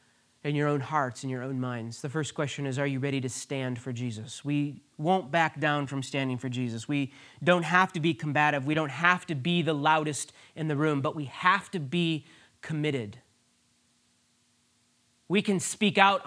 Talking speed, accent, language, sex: 195 wpm, American, English, male